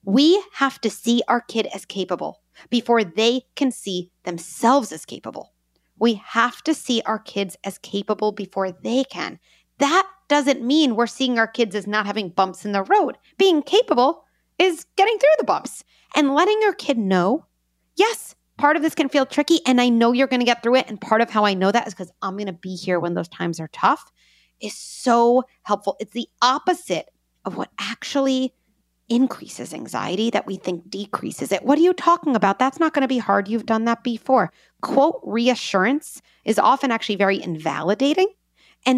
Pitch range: 200-280 Hz